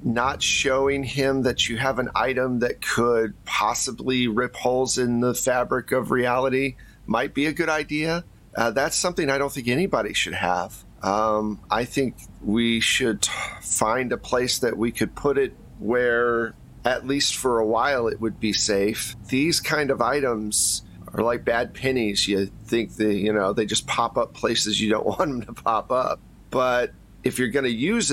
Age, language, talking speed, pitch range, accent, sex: 40-59, English, 185 wpm, 105-130 Hz, American, male